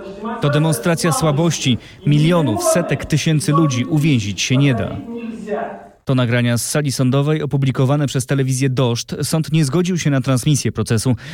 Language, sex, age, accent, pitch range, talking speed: Polish, male, 30-49, native, 100-145 Hz, 145 wpm